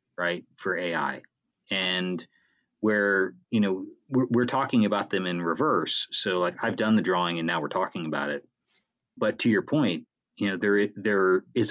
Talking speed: 180 wpm